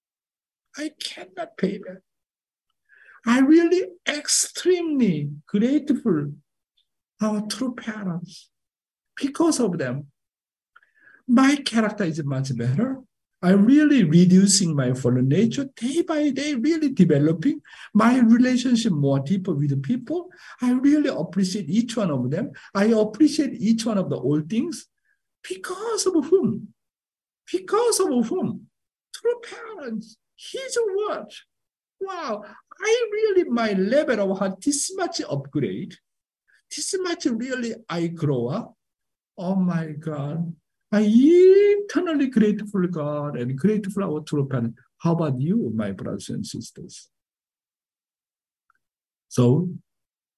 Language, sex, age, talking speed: English, male, 60-79, 115 wpm